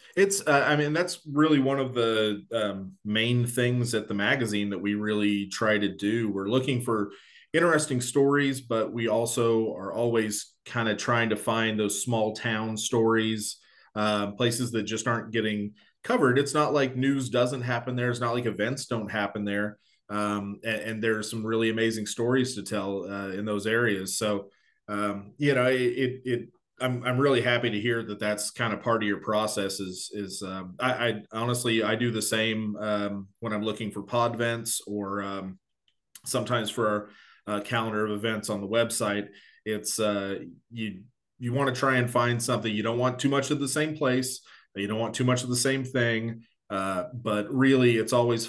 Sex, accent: male, American